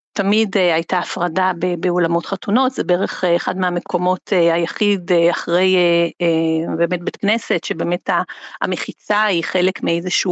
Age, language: 50-69, Hebrew